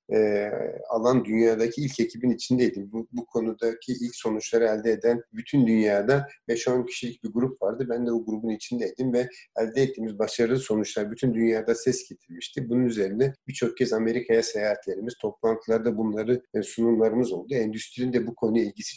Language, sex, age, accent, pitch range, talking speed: Turkish, male, 40-59, native, 110-125 Hz, 155 wpm